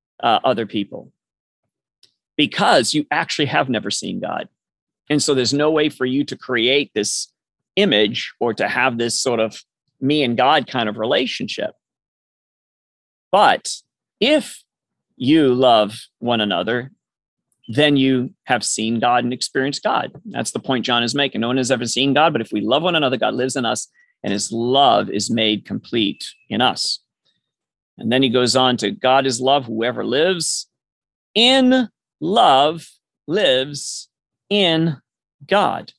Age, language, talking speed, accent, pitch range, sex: 40-59, English, 155 wpm, American, 120-160 Hz, male